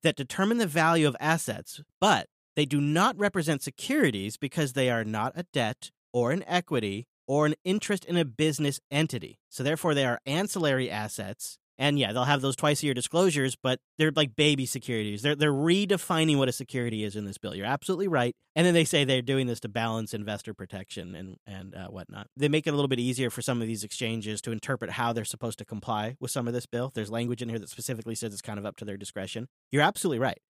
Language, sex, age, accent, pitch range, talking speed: English, male, 40-59, American, 115-150 Hz, 230 wpm